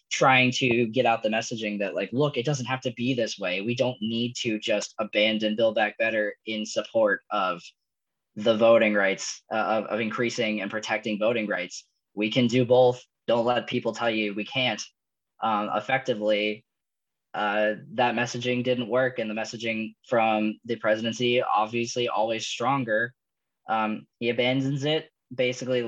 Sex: male